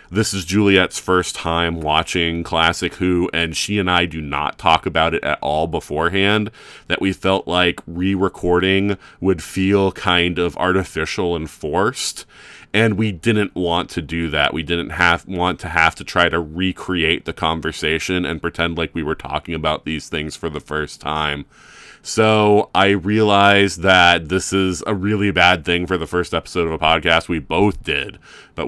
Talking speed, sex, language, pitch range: 180 wpm, male, English, 85-100 Hz